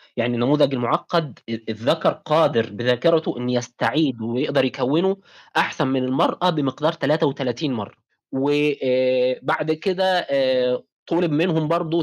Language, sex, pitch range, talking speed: Arabic, male, 125-160 Hz, 105 wpm